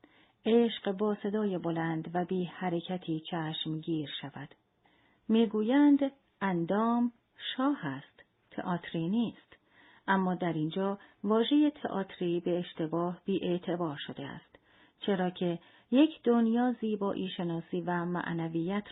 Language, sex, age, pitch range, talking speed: Persian, female, 40-59, 170-230 Hz, 110 wpm